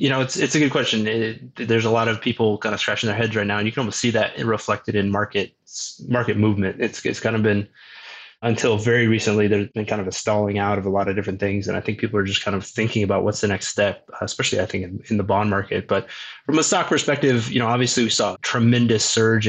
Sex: male